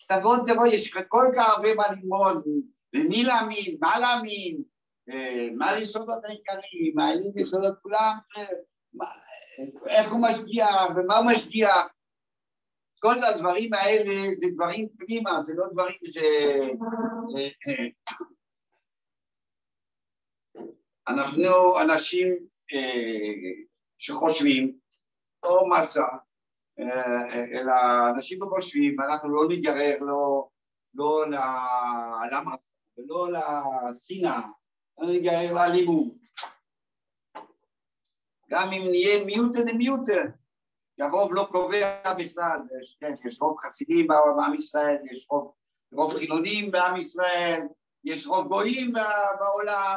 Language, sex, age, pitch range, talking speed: Hebrew, male, 60-79, 150-230 Hz, 105 wpm